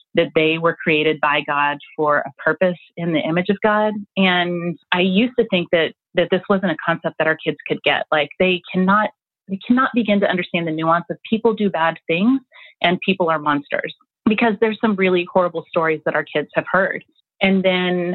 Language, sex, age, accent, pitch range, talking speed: English, female, 30-49, American, 155-190 Hz, 205 wpm